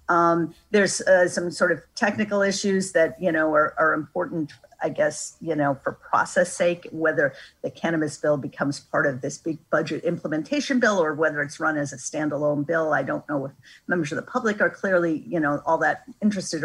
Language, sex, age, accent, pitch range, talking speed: English, female, 50-69, American, 145-175 Hz, 200 wpm